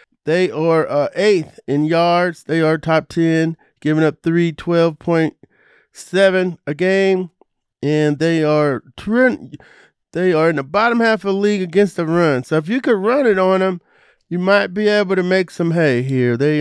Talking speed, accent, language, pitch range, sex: 185 wpm, American, English, 150-190 Hz, male